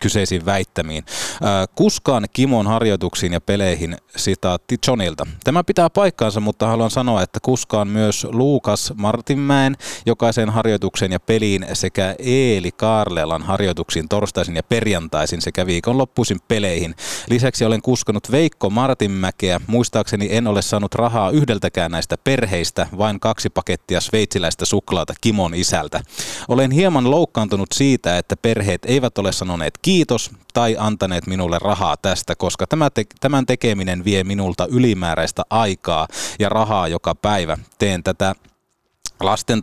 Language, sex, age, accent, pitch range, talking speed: Finnish, male, 30-49, native, 95-120 Hz, 125 wpm